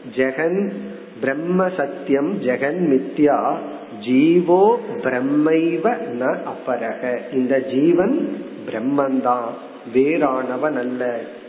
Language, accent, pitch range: Tamil, native, 135-190 Hz